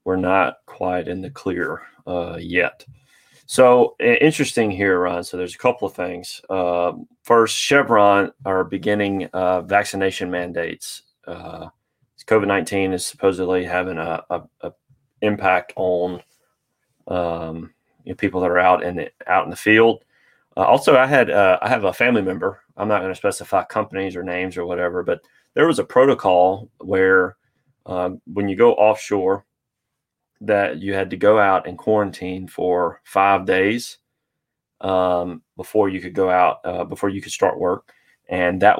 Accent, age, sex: American, 30-49, male